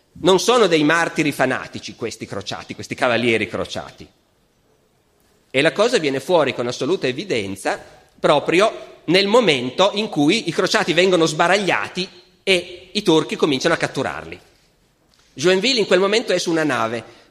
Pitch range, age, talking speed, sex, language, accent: 145-190 Hz, 40-59, 140 wpm, male, Italian, native